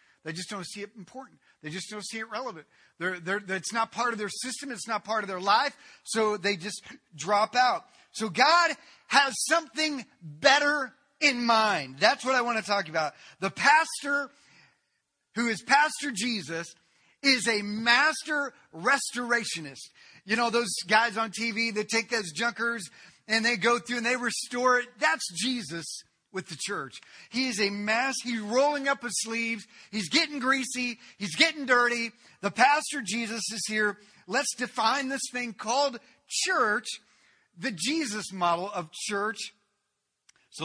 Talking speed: 160 wpm